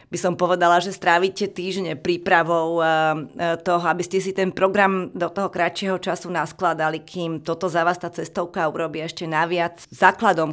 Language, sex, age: Slovak, female, 40-59